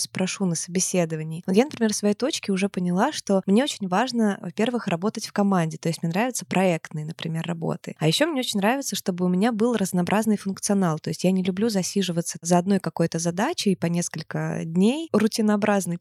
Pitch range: 180-220 Hz